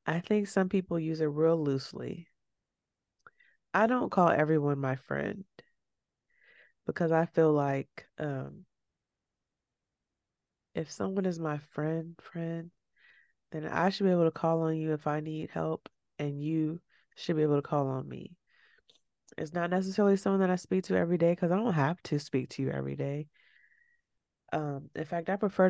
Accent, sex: American, female